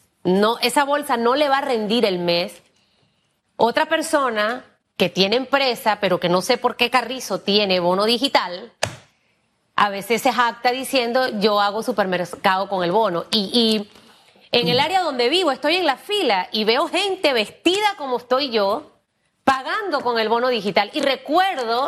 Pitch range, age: 220-280 Hz, 30-49